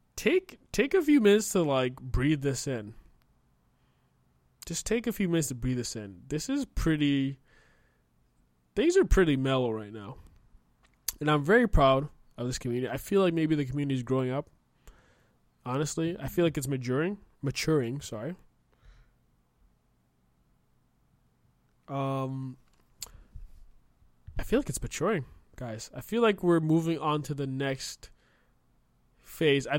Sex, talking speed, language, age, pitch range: male, 140 wpm, English, 20-39, 110-145 Hz